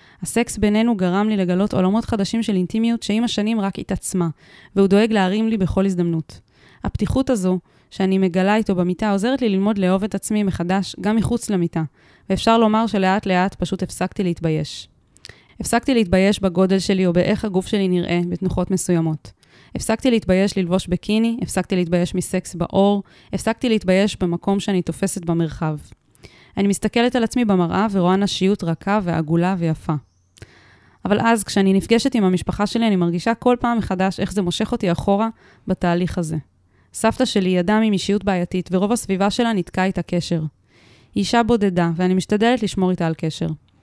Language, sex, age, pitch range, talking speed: Hebrew, female, 20-39, 175-215 Hz, 150 wpm